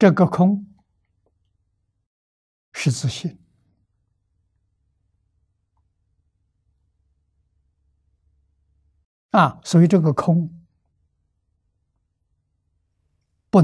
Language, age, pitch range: Chinese, 60-79, 90-135 Hz